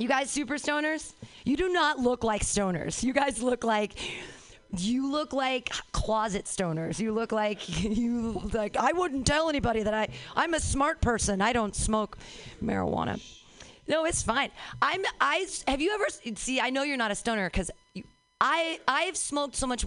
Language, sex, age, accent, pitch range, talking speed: English, female, 40-59, American, 185-290 Hz, 180 wpm